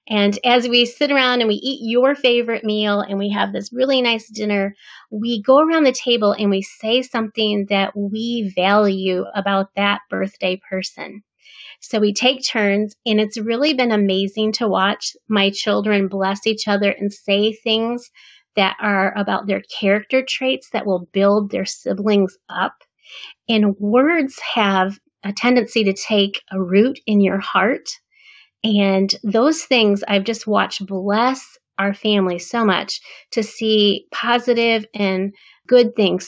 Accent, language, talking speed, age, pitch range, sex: American, English, 155 wpm, 30-49, 200-240 Hz, female